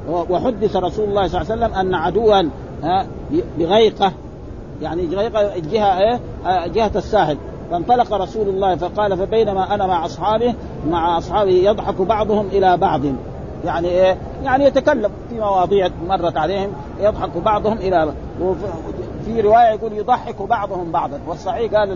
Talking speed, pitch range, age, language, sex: 135 wpm, 185-225 Hz, 50-69, Arabic, male